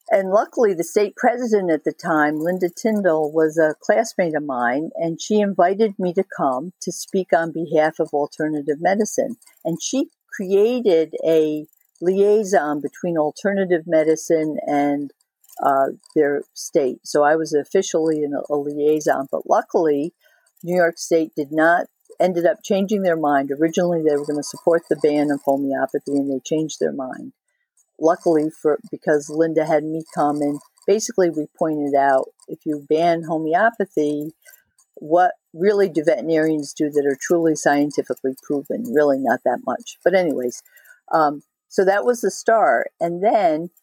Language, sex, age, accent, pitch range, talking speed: English, female, 50-69, American, 150-190 Hz, 155 wpm